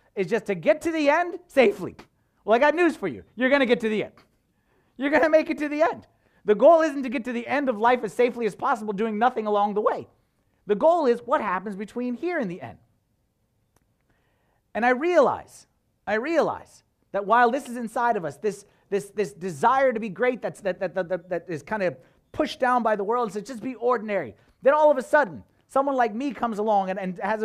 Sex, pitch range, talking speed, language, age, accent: male, 200-270 Hz, 230 wpm, English, 30-49, American